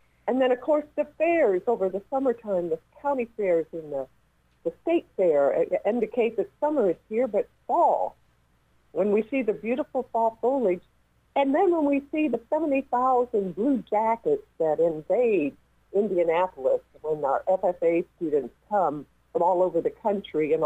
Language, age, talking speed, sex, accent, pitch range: English, 50-69, 155 wpm, female, American, 170-265 Hz